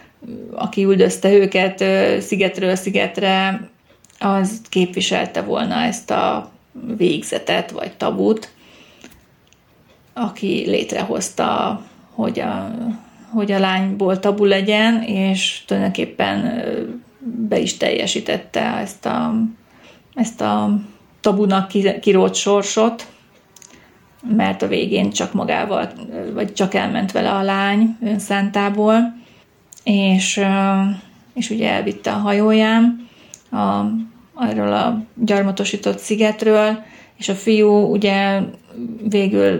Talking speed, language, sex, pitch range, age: 95 wpm, Hungarian, female, 195-225 Hz, 30-49